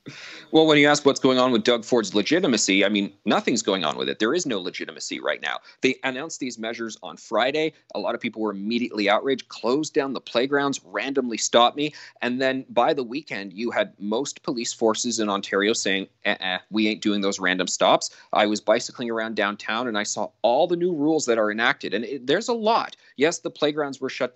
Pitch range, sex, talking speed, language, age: 110-155 Hz, male, 215 wpm, English, 30-49